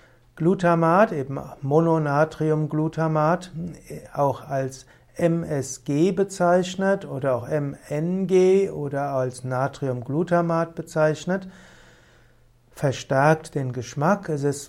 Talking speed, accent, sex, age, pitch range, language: 75 wpm, German, male, 60-79, 135-165 Hz, German